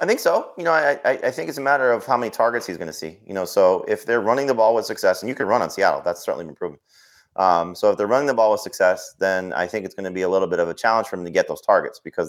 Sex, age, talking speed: male, 30-49, 330 wpm